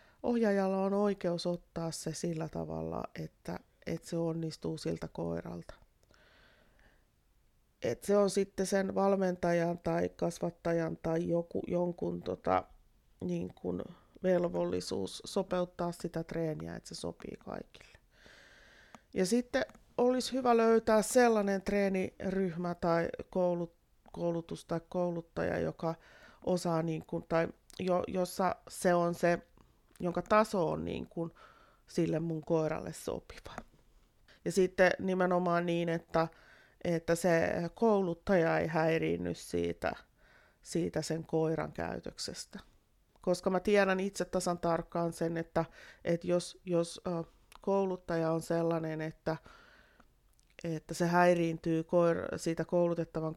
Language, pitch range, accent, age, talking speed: Finnish, 160-180 Hz, native, 30-49, 110 wpm